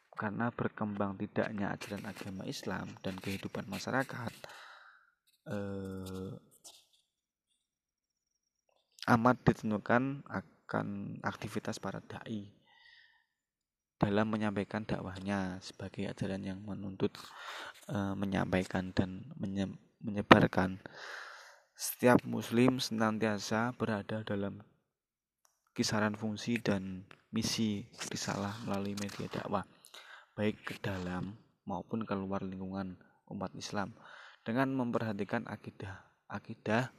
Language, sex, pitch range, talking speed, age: Indonesian, male, 100-115 Hz, 85 wpm, 20-39